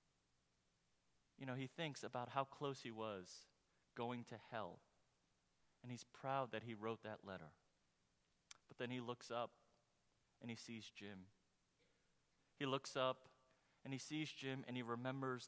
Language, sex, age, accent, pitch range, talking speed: English, male, 30-49, American, 110-135 Hz, 150 wpm